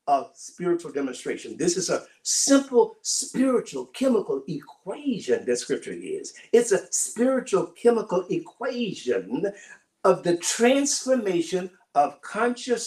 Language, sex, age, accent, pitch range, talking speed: English, male, 50-69, American, 170-275 Hz, 105 wpm